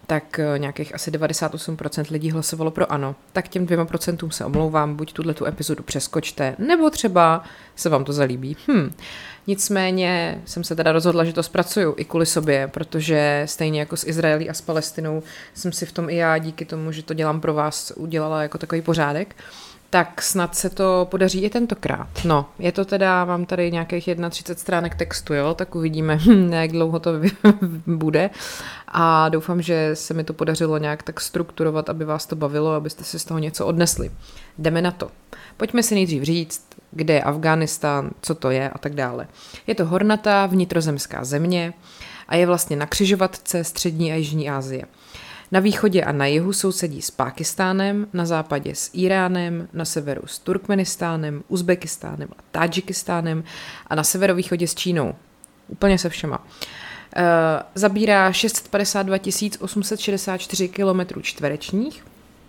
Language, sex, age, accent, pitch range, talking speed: Czech, female, 30-49, native, 155-185 Hz, 160 wpm